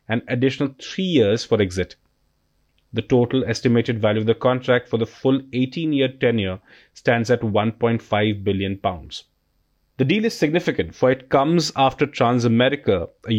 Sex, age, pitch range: male, 30-49, 110-130 Hz